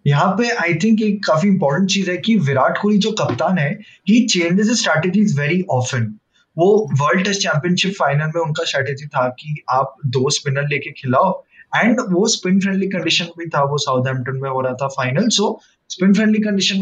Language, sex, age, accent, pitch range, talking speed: Hindi, male, 20-39, native, 140-185 Hz, 145 wpm